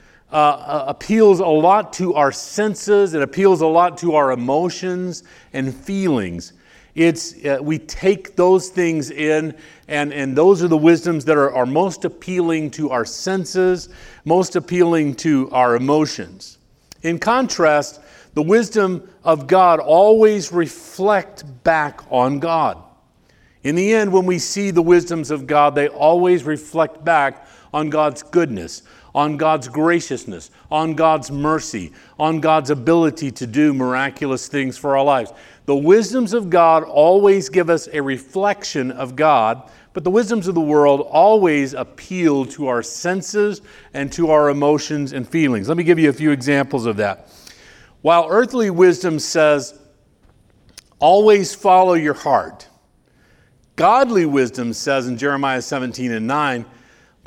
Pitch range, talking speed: 140-180 Hz, 145 wpm